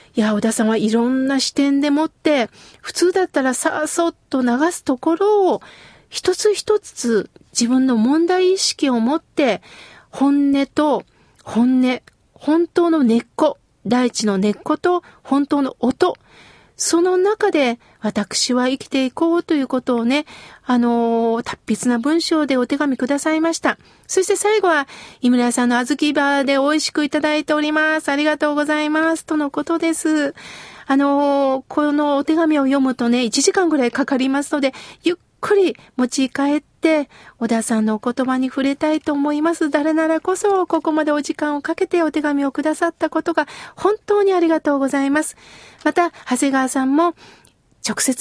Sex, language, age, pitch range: female, Japanese, 40-59, 260-325 Hz